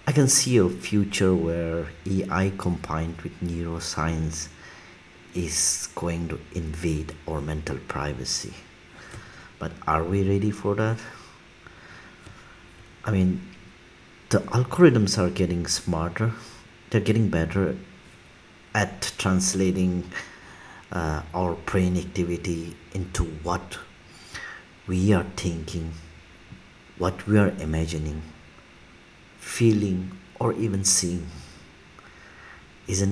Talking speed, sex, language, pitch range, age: 95 wpm, male, English, 80-100 Hz, 50-69